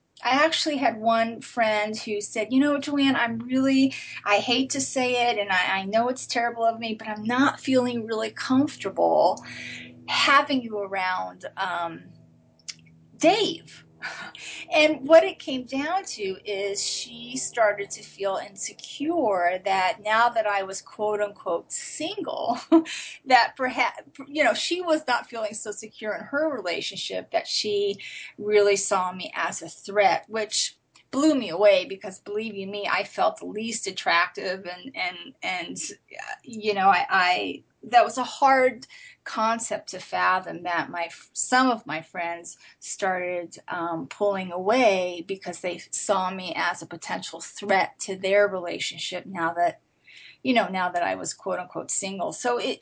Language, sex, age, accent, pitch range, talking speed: English, female, 30-49, American, 190-270 Hz, 155 wpm